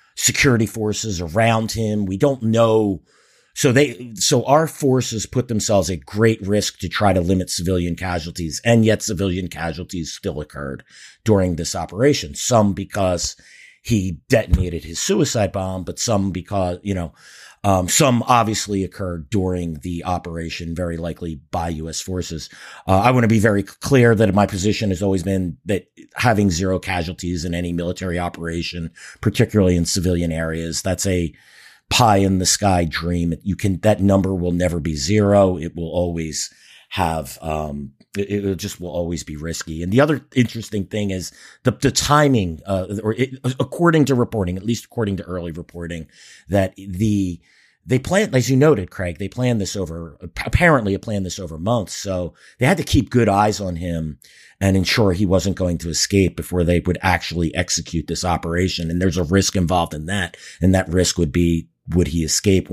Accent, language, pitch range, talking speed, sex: American, English, 85-105 Hz, 175 wpm, male